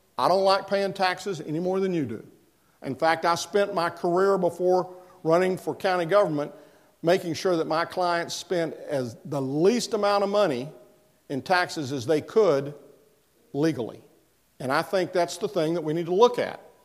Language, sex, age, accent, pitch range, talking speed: English, male, 50-69, American, 155-200 Hz, 180 wpm